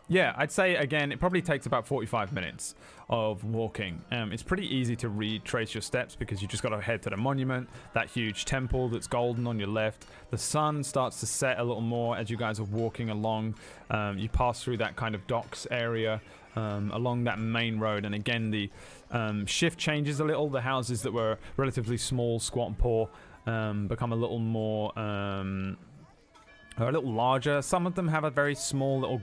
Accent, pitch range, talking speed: British, 105-125 Hz, 205 wpm